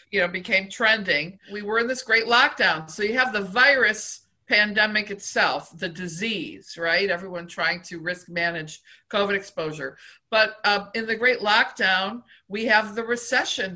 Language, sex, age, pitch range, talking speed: English, female, 50-69, 180-230 Hz, 155 wpm